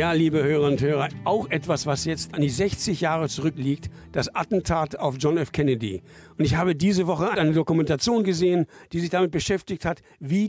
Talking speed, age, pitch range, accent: 195 wpm, 60-79, 155-195 Hz, German